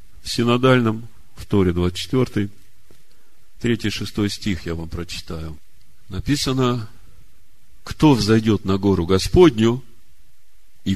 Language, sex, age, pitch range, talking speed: Russian, male, 40-59, 90-110 Hz, 95 wpm